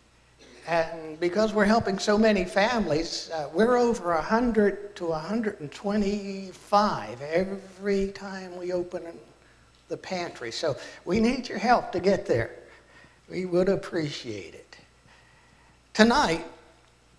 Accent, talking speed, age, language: American, 110 wpm, 60-79, English